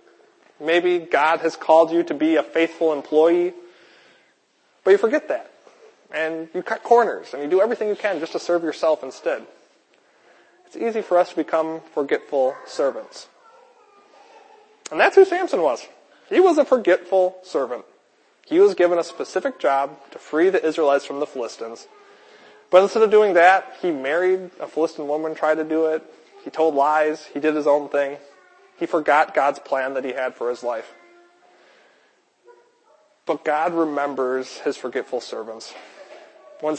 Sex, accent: male, American